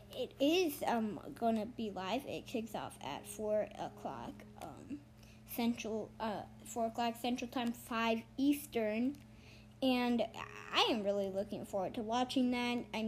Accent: American